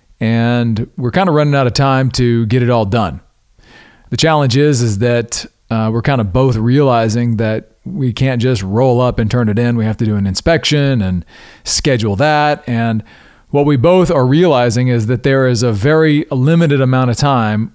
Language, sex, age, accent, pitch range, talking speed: English, male, 40-59, American, 115-145 Hz, 200 wpm